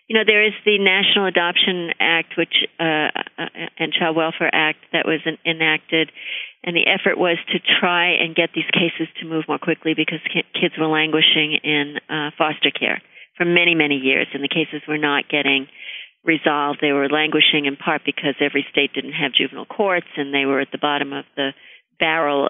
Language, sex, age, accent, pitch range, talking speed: English, female, 50-69, American, 150-170 Hz, 190 wpm